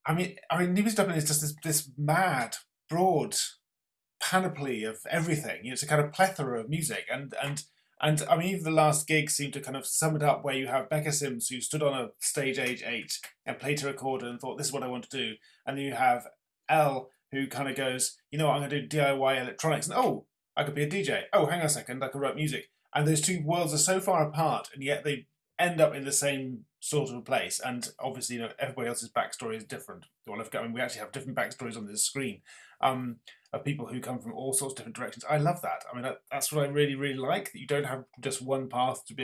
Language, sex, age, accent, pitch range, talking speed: English, male, 30-49, British, 130-155 Hz, 255 wpm